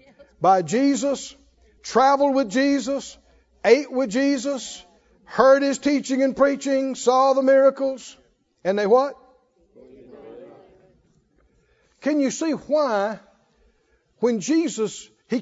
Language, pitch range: English, 175-275 Hz